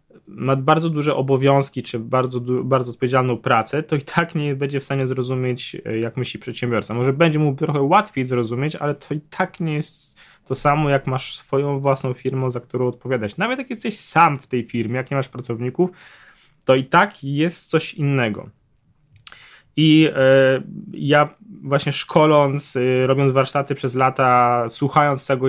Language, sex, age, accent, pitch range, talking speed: Polish, male, 20-39, native, 120-145 Hz, 165 wpm